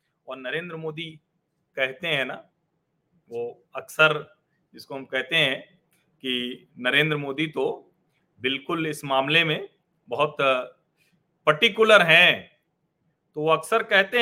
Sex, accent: male, native